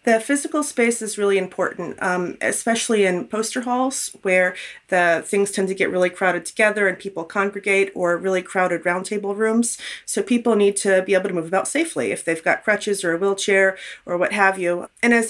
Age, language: 30-49, English